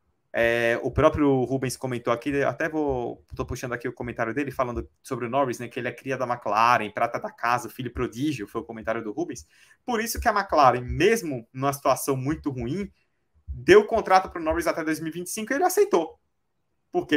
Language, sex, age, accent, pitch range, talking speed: Portuguese, male, 20-39, Brazilian, 115-150 Hz, 200 wpm